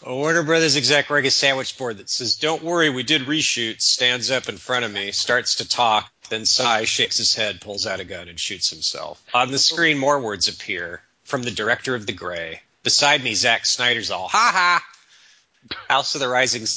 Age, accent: 40-59, American